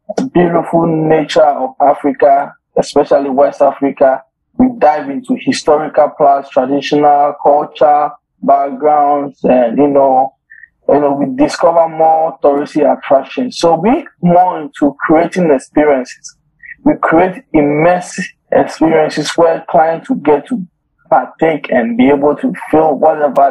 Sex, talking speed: male, 120 wpm